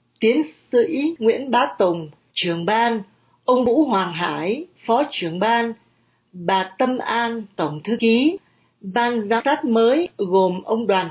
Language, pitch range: Vietnamese, 185-240 Hz